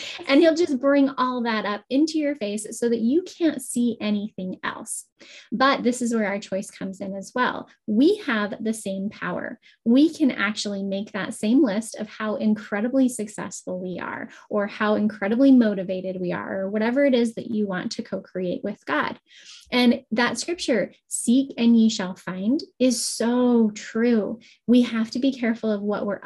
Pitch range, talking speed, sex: 210-260 Hz, 185 wpm, female